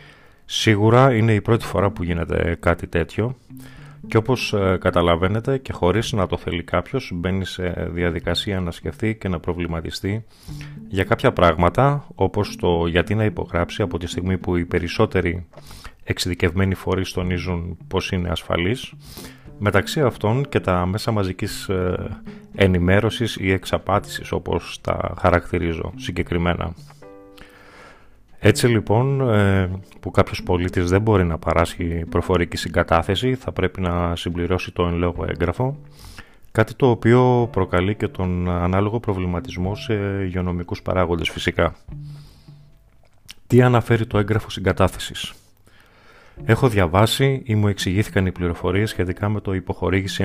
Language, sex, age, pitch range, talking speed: Greek, male, 30-49, 90-110 Hz, 125 wpm